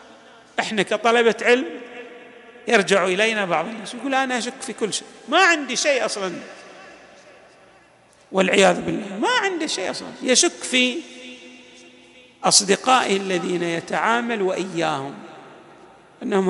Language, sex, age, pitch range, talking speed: Arabic, male, 50-69, 205-265 Hz, 105 wpm